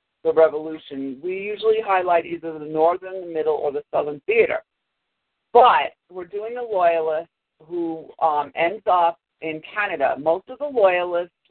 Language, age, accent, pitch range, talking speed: English, 50-69, American, 155-200 Hz, 150 wpm